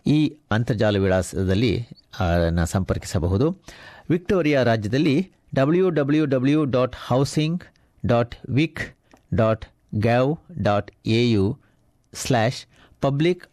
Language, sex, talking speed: Kannada, male, 85 wpm